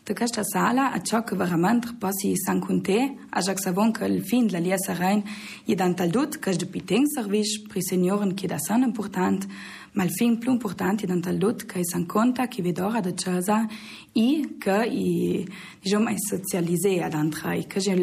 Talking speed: 190 wpm